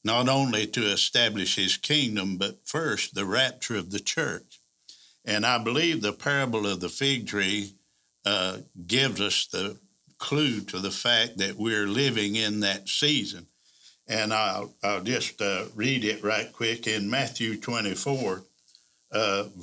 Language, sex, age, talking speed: English, male, 60-79, 150 wpm